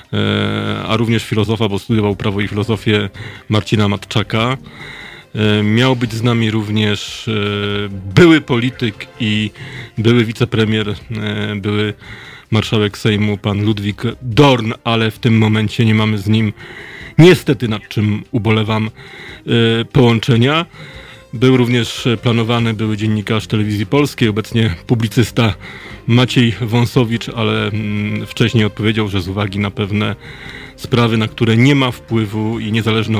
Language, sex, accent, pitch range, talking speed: Polish, male, native, 105-125 Hz, 120 wpm